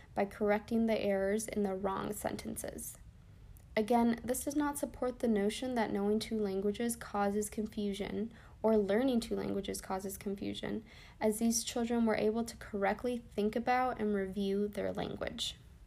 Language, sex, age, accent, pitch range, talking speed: English, female, 20-39, American, 200-230 Hz, 150 wpm